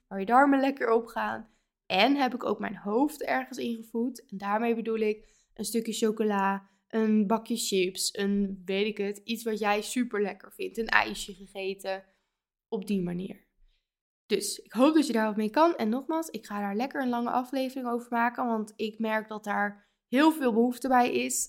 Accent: Dutch